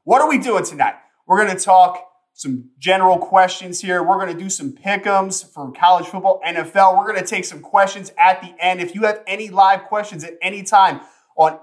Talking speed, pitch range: 215 wpm, 150-185 Hz